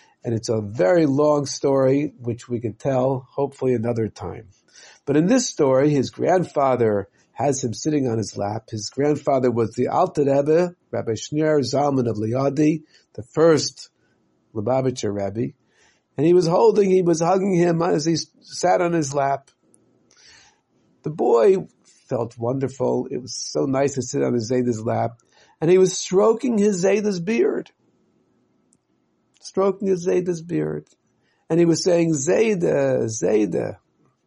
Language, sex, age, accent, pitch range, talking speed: English, male, 50-69, American, 120-175 Hz, 145 wpm